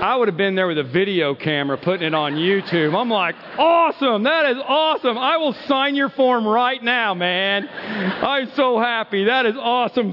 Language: English